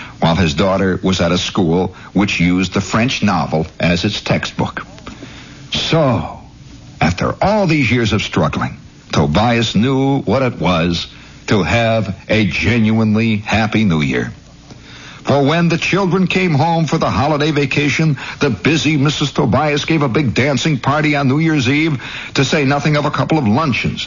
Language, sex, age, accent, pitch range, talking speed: English, male, 60-79, American, 95-135 Hz, 160 wpm